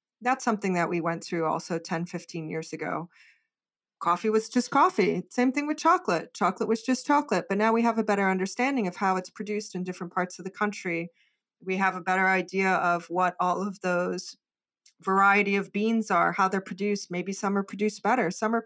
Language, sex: English, female